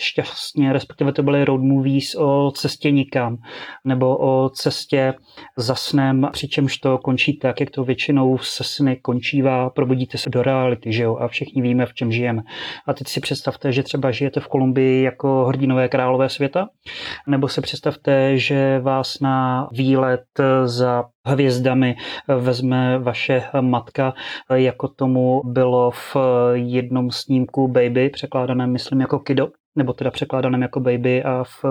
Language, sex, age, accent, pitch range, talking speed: Czech, male, 30-49, native, 125-135 Hz, 150 wpm